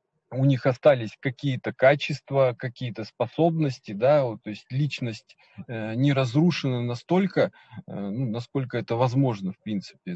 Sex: male